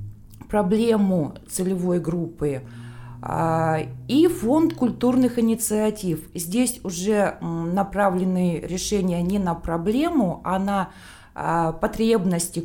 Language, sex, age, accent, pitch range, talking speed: Russian, female, 20-39, native, 160-220 Hz, 80 wpm